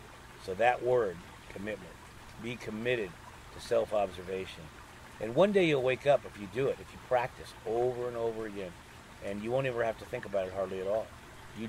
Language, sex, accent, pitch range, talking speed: English, male, American, 100-120 Hz, 195 wpm